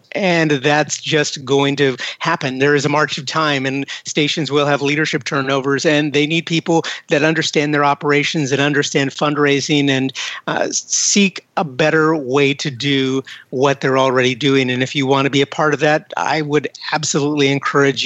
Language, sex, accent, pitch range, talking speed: English, male, American, 140-160 Hz, 185 wpm